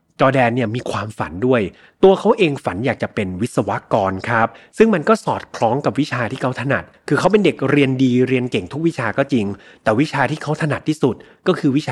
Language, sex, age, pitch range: Thai, male, 30-49, 115-150 Hz